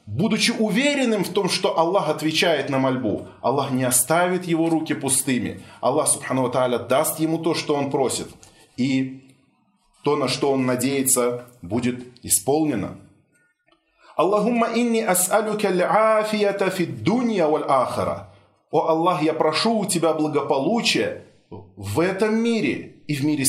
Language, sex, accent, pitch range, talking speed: Russian, male, native, 155-225 Hz, 110 wpm